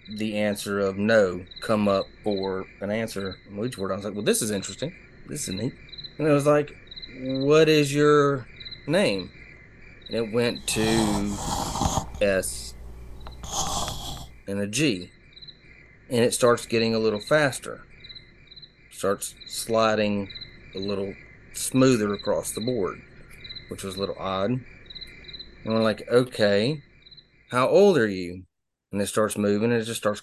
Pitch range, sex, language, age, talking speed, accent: 100-120 Hz, male, English, 30-49, 145 wpm, American